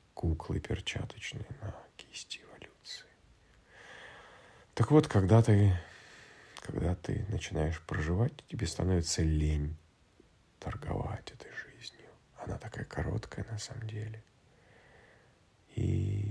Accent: native